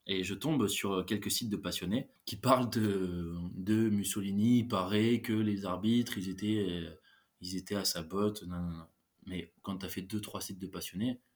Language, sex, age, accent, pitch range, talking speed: French, male, 20-39, French, 95-115 Hz, 205 wpm